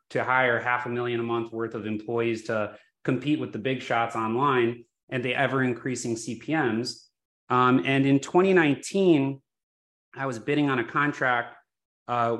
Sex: male